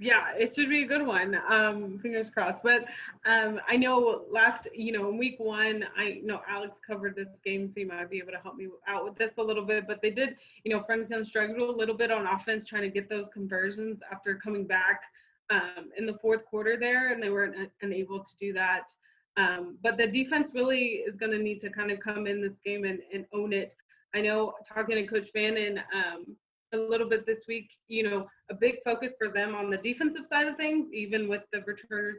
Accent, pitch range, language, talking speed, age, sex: American, 195-225 Hz, English, 230 wpm, 20-39, female